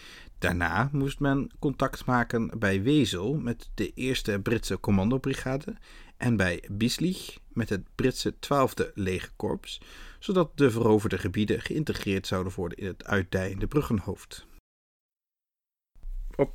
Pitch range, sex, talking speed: 100-130 Hz, male, 120 wpm